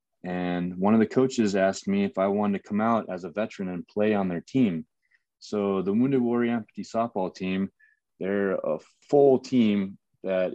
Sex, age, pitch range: male, 20-39, 90-115 Hz